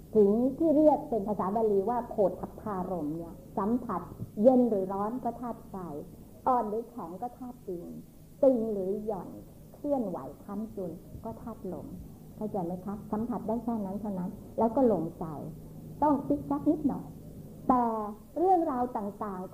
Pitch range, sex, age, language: 200-255 Hz, male, 60-79, Thai